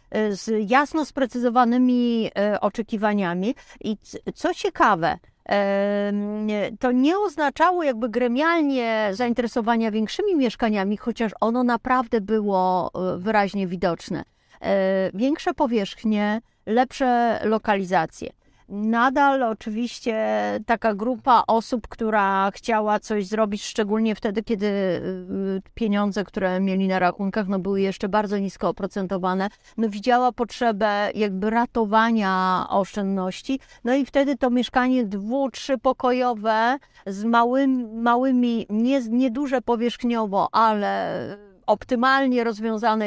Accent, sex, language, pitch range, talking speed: native, female, Polish, 205-250 Hz, 95 wpm